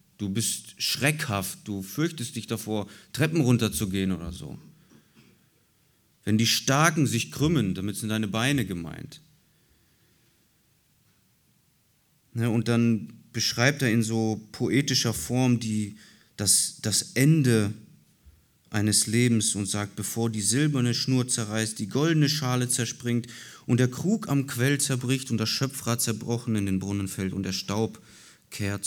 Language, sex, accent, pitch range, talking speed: German, male, German, 100-135 Hz, 135 wpm